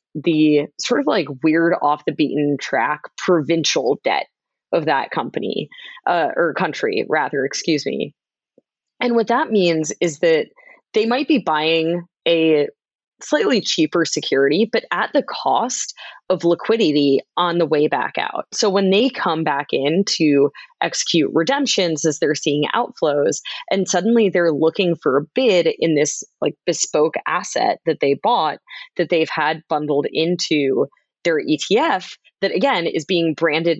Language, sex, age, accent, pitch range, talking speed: English, female, 20-39, American, 150-215 Hz, 150 wpm